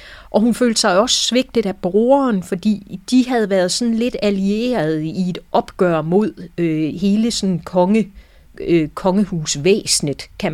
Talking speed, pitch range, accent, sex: 125 wpm, 165-215 Hz, native, female